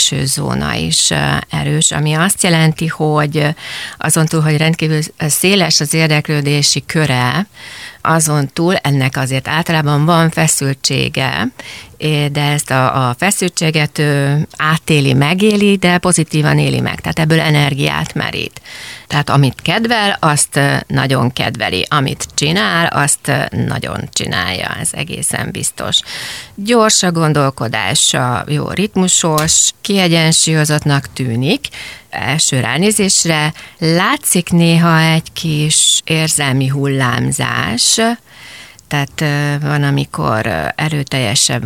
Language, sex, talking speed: Hungarian, female, 100 wpm